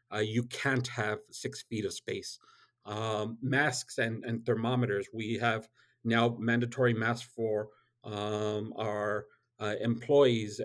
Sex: male